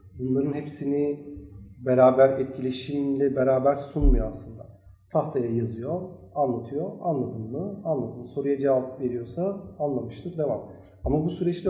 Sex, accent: male, native